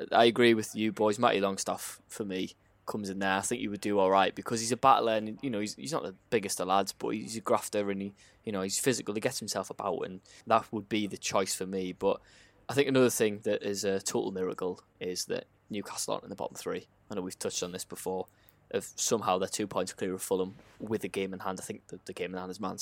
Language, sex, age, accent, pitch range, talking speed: English, male, 10-29, British, 95-115 Hz, 265 wpm